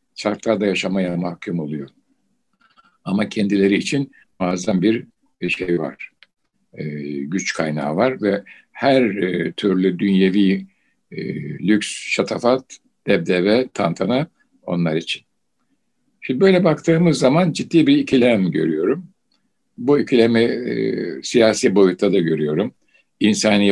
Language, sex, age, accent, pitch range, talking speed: Turkish, male, 60-79, native, 100-145 Hz, 105 wpm